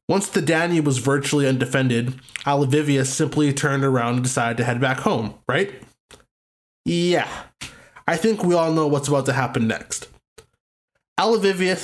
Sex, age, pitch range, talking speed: male, 20-39, 130-170 Hz, 145 wpm